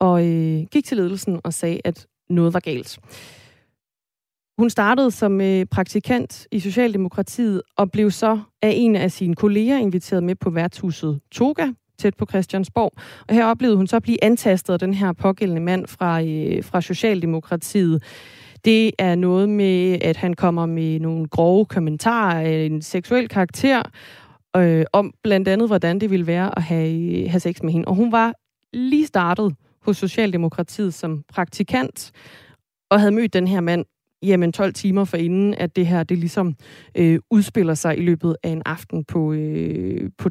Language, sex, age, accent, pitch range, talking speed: Danish, female, 20-39, native, 165-210 Hz, 170 wpm